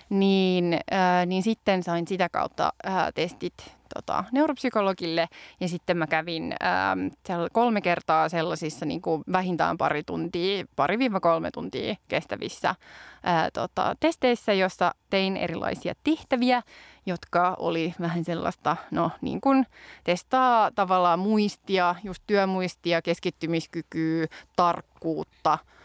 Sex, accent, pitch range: female, native, 170-220 Hz